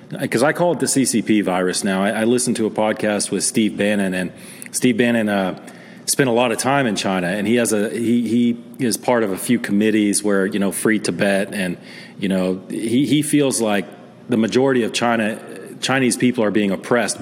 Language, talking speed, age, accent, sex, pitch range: English, 215 wpm, 40-59, American, male, 100-120 Hz